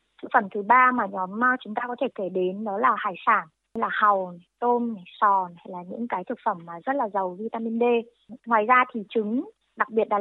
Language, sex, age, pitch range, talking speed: Vietnamese, female, 20-39, 195-250 Hz, 230 wpm